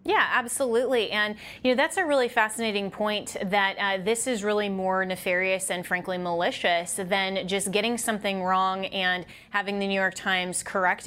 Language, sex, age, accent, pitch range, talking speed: English, female, 20-39, American, 190-220 Hz, 175 wpm